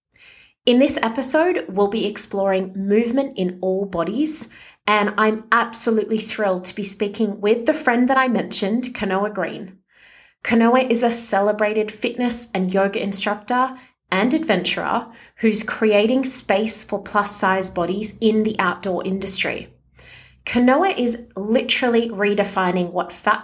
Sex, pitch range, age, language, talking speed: female, 190-235 Hz, 30-49, English, 135 wpm